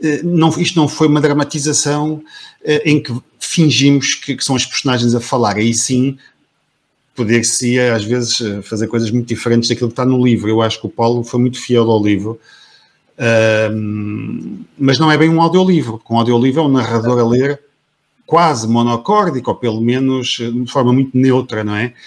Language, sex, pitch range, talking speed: Portuguese, male, 115-145 Hz, 175 wpm